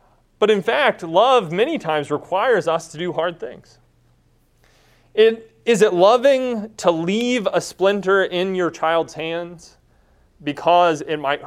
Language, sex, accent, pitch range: English, male, American, 140-205 Hz